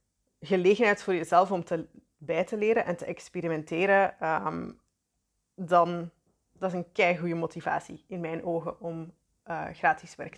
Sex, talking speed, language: female, 150 wpm, Dutch